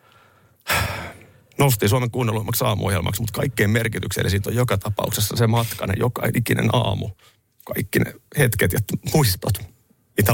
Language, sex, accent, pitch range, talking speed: Finnish, male, native, 95-120 Hz, 130 wpm